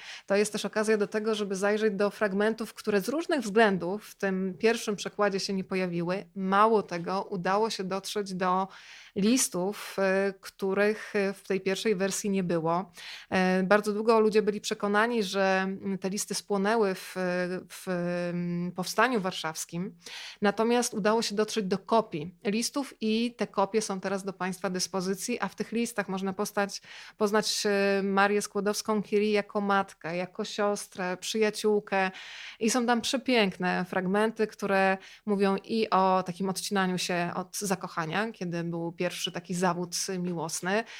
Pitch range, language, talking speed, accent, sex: 190-215 Hz, Polish, 140 wpm, native, female